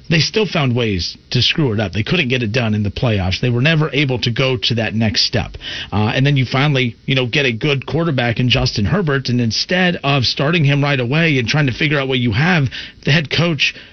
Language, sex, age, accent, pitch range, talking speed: English, male, 40-59, American, 125-160 Hz, 250 wpm